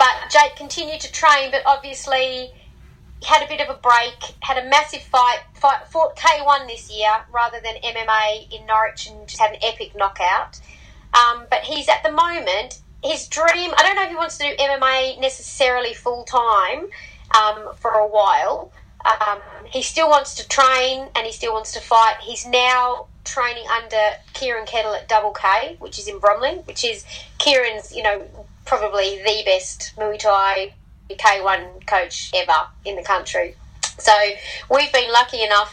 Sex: female